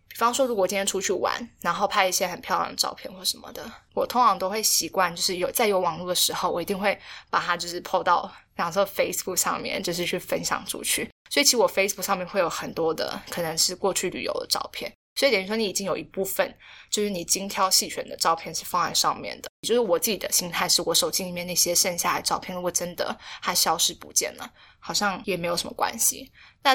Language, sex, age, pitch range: Chinese, female, 20-39, 175-215 Hz